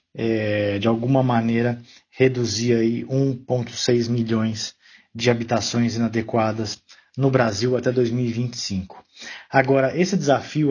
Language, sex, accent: Portuguese, male, Brazilian